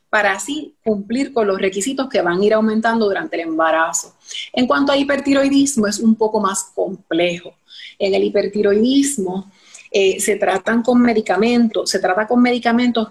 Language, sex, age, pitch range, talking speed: Spanish, female, 30-49, 185-235 Hz, 145 wpm